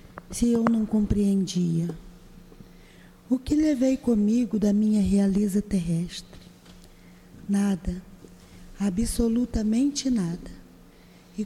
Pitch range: 180-230 Hz